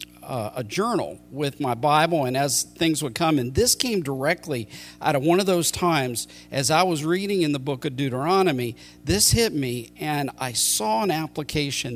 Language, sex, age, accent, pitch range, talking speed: English, male, 50-69, American, 125-170 Hz, 185 wpm